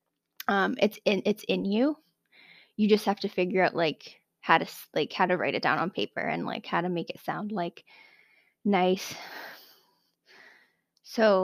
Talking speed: 175 wpm